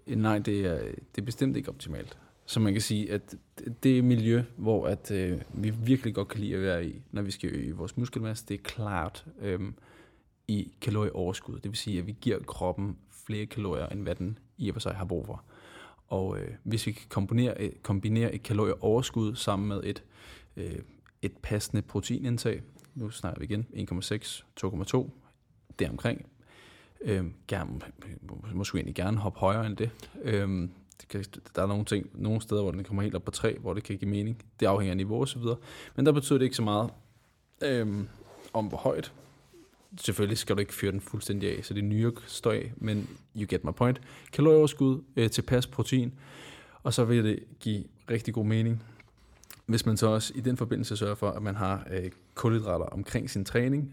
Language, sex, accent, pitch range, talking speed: Danish, male, native, 100-120 Hz, 195 wpm